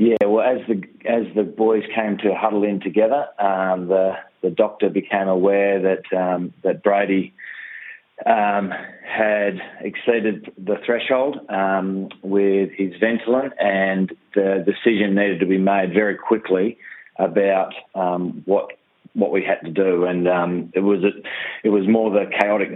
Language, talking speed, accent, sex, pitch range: English, 155 wpm, Australian, male, 95-105 Hz